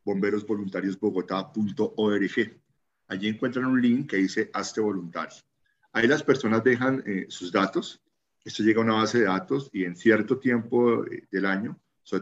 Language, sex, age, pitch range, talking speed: Spanish, male, 40-59, 100-120 Hz, 145 wpm